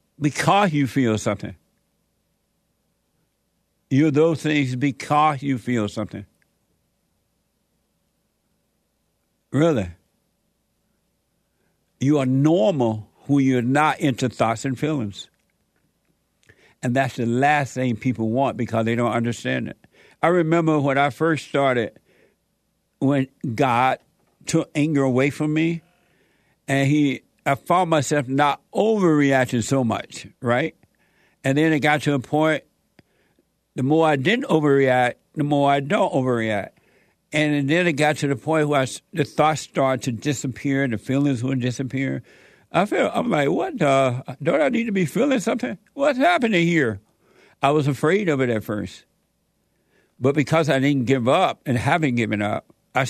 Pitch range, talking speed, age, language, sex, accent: 125-155 Hz, 145 wpm, 60-79, English, male, American